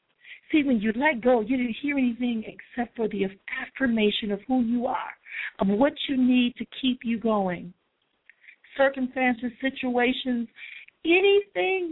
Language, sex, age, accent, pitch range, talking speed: English, female, 50-69, American, 205-275 Hz, 140 wpm